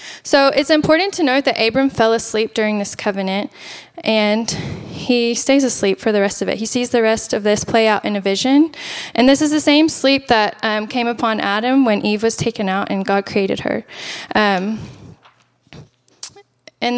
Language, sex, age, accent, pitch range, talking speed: English, female, 10-29, American, 210-260 Hz, 190 wpm